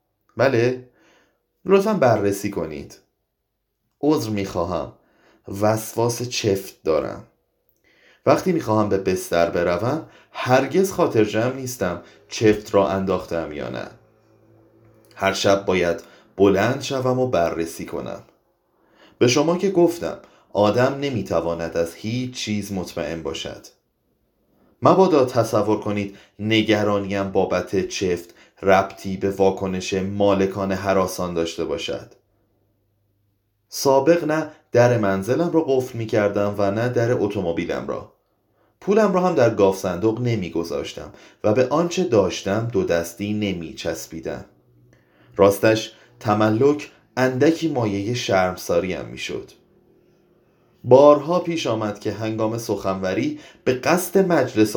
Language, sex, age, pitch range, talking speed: Persian, male, 30-49, 95-125 Hz, 105 wpm